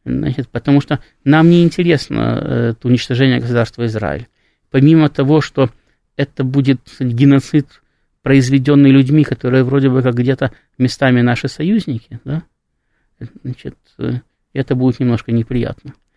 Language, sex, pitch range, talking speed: Russian, male, 120-150 Hz, 115 wpm